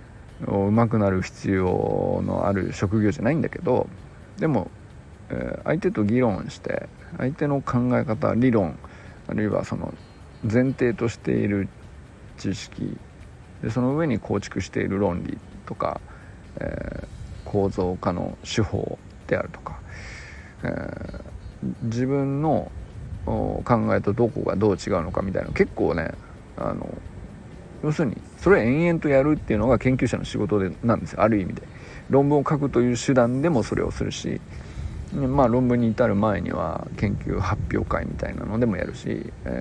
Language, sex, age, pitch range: Japanese, male, 50-69, 100-135 Hz